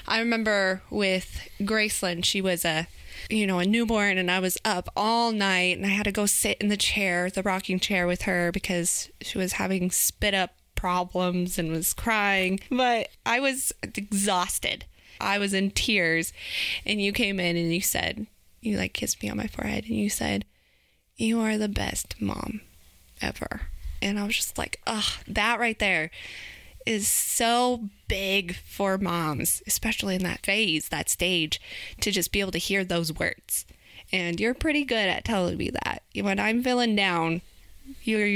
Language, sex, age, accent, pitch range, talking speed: English, female, 20-39, American, 175-220 Hz, 175 wpm